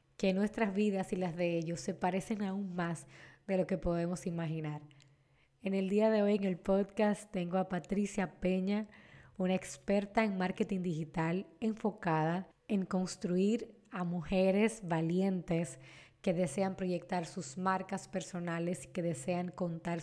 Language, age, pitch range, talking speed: Spanish, 20-39, 170-195 Hz, 145 wpm